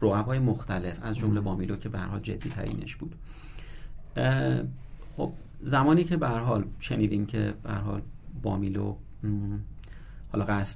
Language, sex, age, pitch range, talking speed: Persian, male, 40-59, 105-130 Hz, 130 wpm